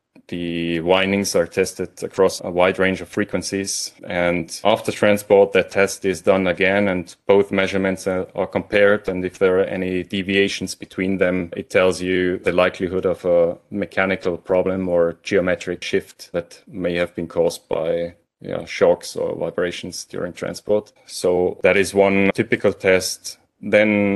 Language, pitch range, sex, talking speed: English, 90-100 Hz, male, 155 wpm